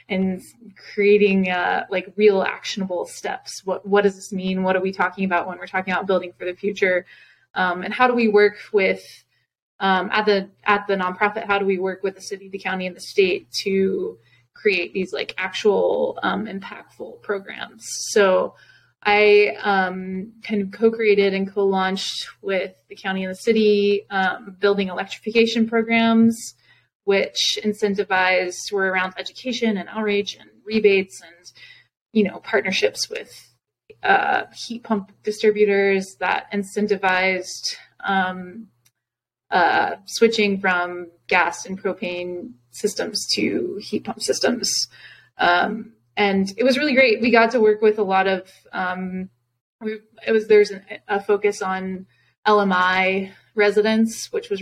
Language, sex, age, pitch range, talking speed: English, female, 20-39, 185-215 Hz, 145 wpm